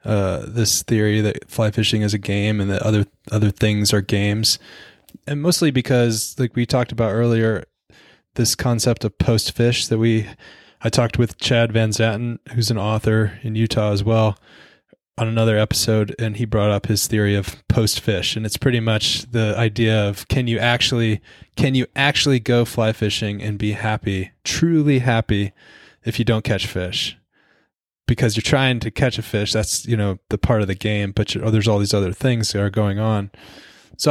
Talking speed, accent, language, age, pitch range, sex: 190 wpm, American, English, 20-39, 105-120 Hz, male